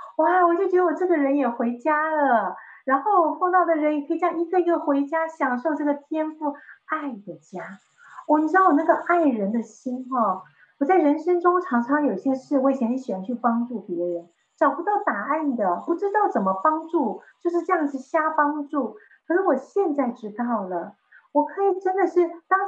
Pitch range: 235-340 Hz